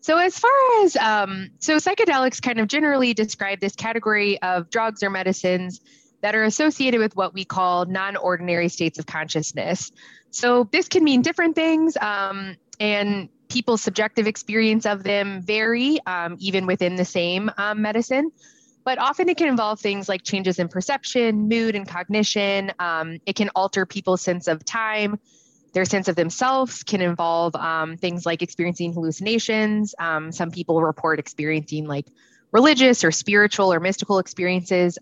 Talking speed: 160 wpm